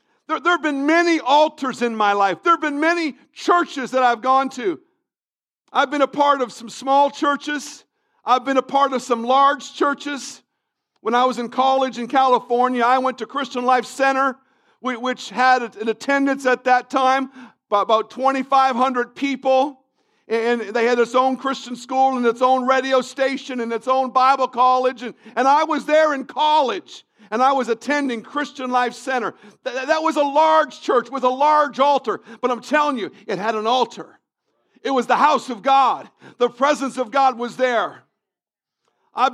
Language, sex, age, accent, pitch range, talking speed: English, male, 50-69, American, 250-290 Hz, 180 wpm